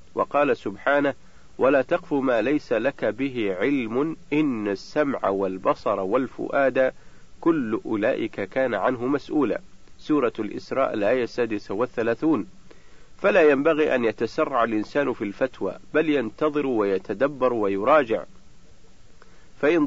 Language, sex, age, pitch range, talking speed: Arabic, male, 50-69, 110-155 Hz, 105 wpm